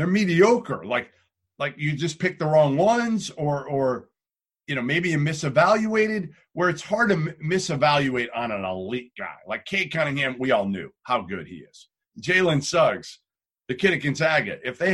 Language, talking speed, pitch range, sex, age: English, 175 wpm, 125-185 Hz, male, 40-59